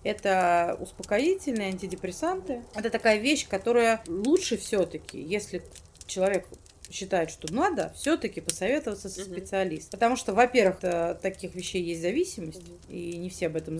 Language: Russian